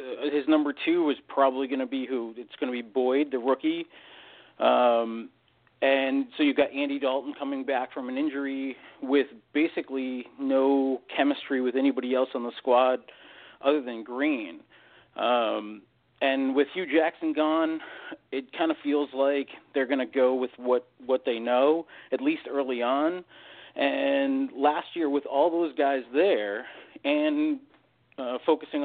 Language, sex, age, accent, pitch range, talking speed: English, male, 40-59, American, 130-155 Hz, 160 wpm